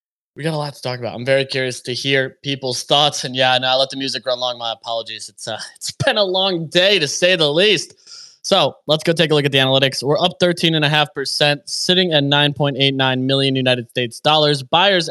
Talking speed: 225 wpm